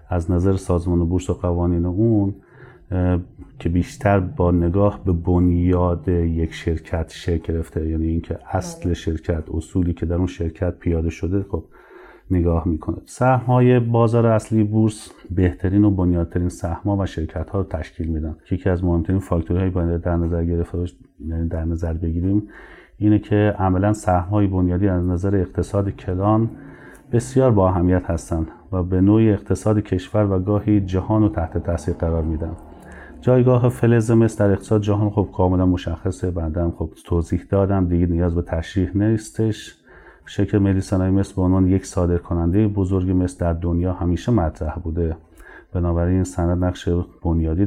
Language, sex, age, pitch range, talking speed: Persian, male, 30-49, 85-100 Hz, 145 wpm